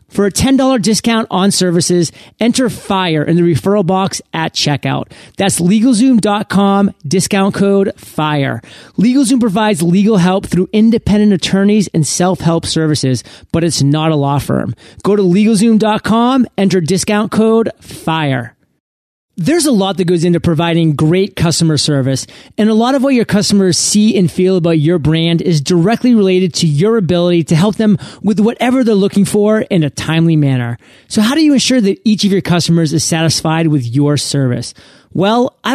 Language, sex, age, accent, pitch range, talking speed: English, male, 30-49, American, 160-215 Hz, 170 wpm